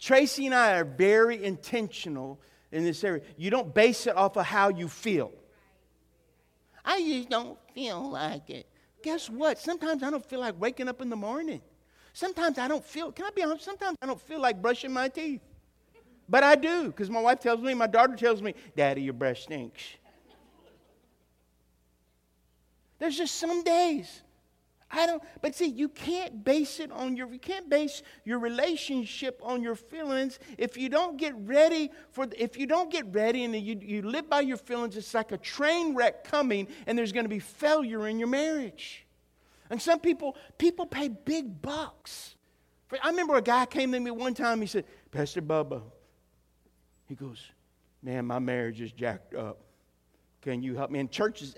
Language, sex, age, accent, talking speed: English, male, 50-69, American, 180 wpm